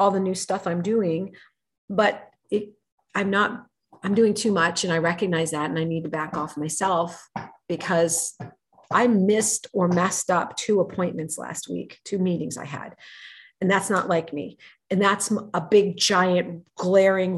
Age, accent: 40-59, American